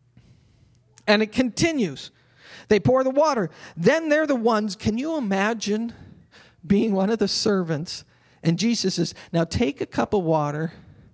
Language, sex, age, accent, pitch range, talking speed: English, male, 40-59, American, 155-235 Hz, 150 wpm